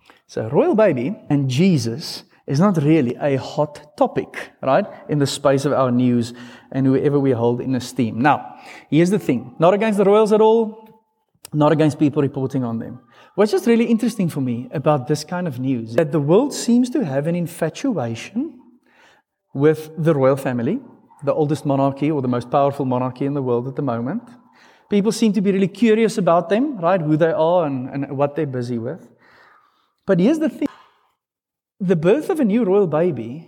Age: 30-49